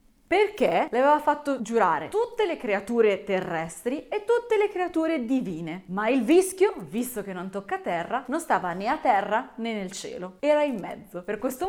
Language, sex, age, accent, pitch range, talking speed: Italian, female, 20-39, native, 200-310 Hz, 180 wpm